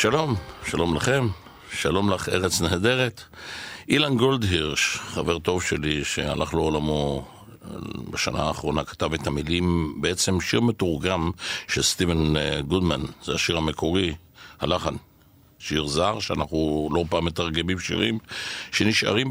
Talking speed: 115 wpm